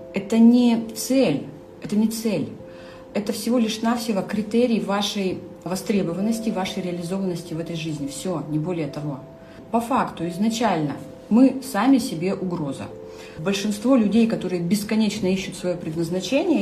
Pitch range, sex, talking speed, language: 160-210 Hz, female, 130 wpm, Russian